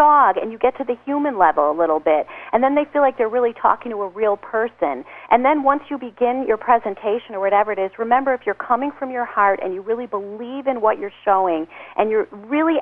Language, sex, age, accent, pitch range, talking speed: English, female, 40-59, American, 195-265 Hz, 245 wpm